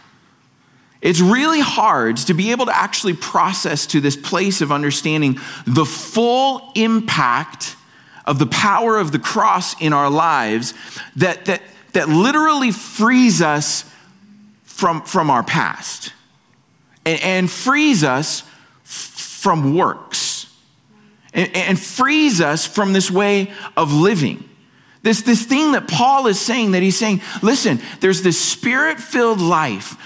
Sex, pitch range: male, 155-225 Hz